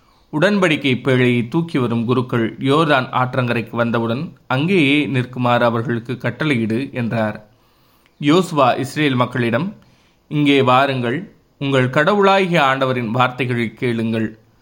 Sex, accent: male, native